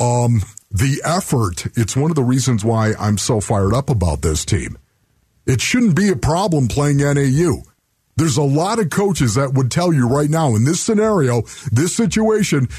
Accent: American